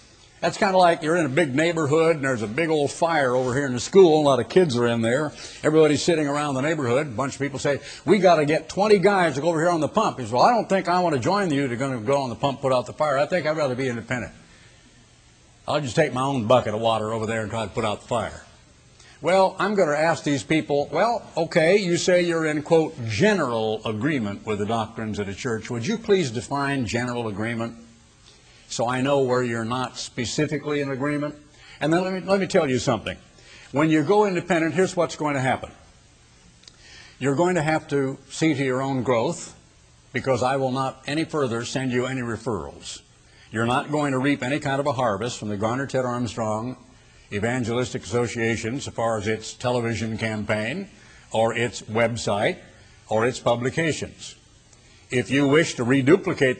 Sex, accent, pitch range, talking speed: male, American, 115-155 Hz, 215 wpm